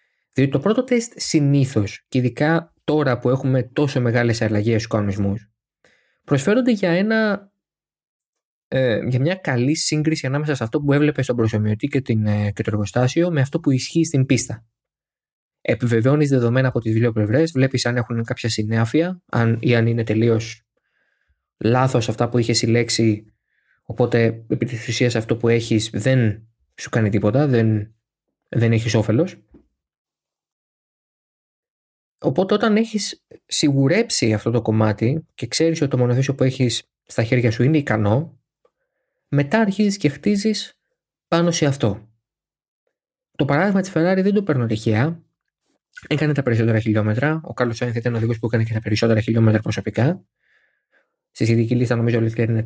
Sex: male